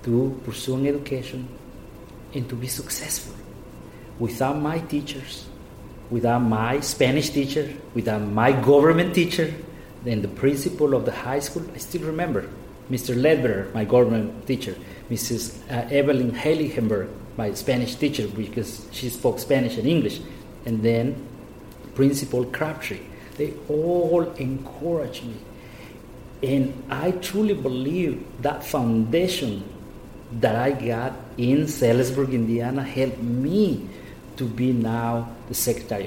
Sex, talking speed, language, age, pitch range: male, 125 wpm, English, 40-59, 120-150 Hz